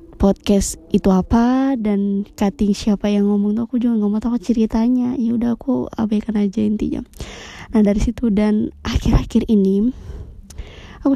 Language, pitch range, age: Indonesian, 200-235 Hz, 20-39